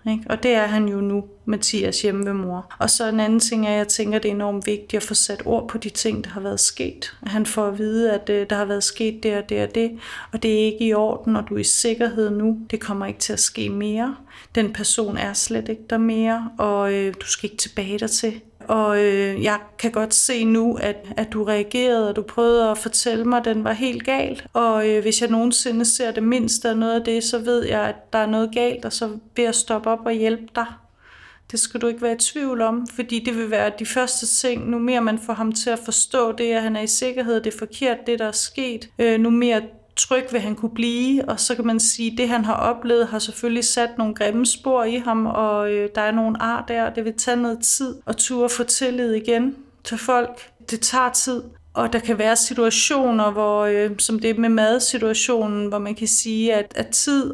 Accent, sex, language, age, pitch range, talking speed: native, female, Danish, 30-49, 215-235 Hz, 250 wpm